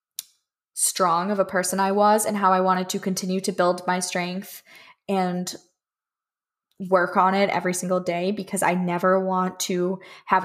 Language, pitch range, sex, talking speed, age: English, 180-195 Hz, female, 165 wpm, 10-29